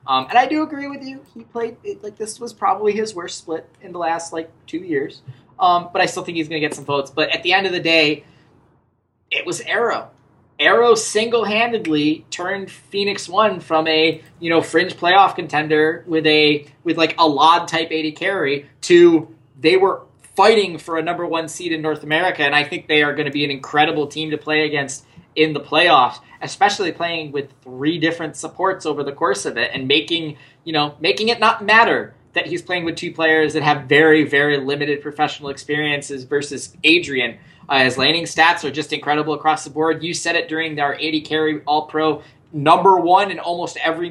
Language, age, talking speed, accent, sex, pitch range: English, 20-39, 205 wpm, American, male, 150-180 Hz